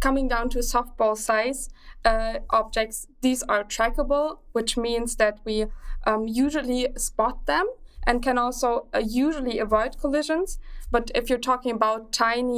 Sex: female